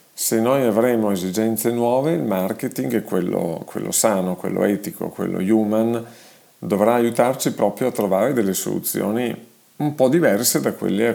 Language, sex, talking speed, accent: Italian, male, 145 wpm, native